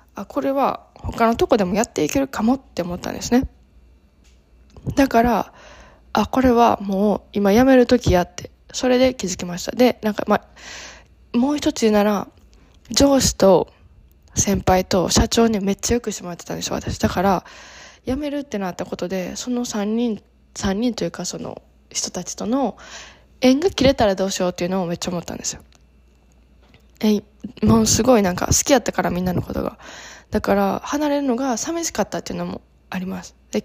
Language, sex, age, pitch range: Japanese, female, 20-39, 185-250 Hz